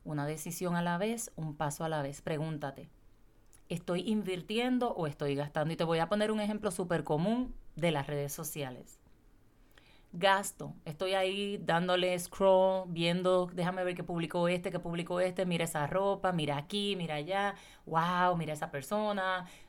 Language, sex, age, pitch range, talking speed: Spanish, female, 30-49, 150-190 Hz, 165 wpm